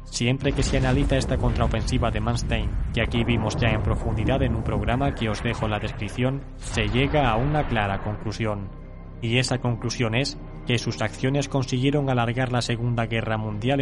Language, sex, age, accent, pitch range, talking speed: Spanish, male, 20-39, Spanish, 110-130 Hz, 180 wpm